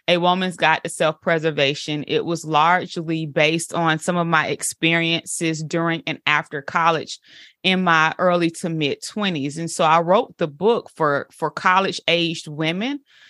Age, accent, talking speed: 20-39, American, 155 wpm